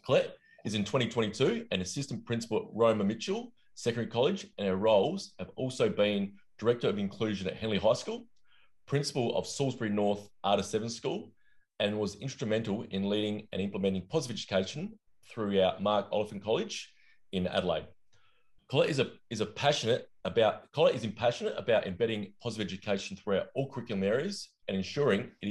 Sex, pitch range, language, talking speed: male, 100-145 Hz, English, 160 wpm